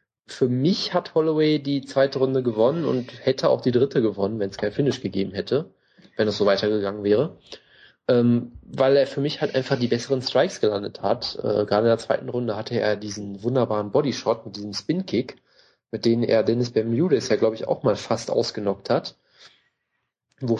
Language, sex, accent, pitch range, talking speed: German, male, German, 105-130 Hz, 190 wpm